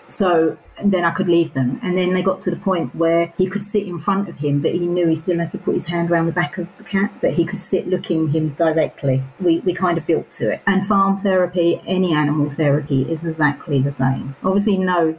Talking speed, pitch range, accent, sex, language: 255 wpm, 160-190 Hz, British, female, English